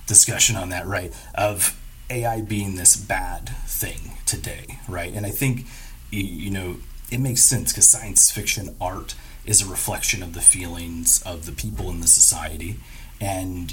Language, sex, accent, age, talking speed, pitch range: English, male, American, 30-49, 160 wpm, 85-110 Hz